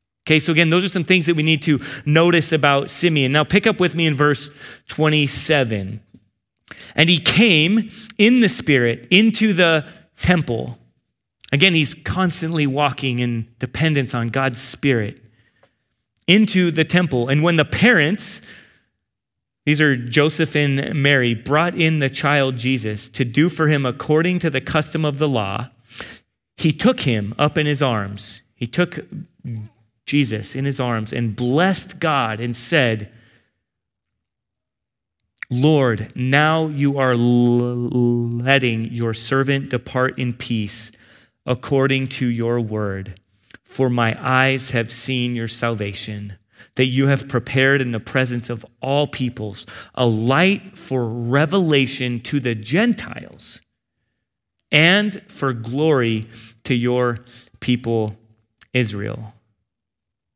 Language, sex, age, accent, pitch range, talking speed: English, male, 30-49, American, 115-155 Hz, 130 wpm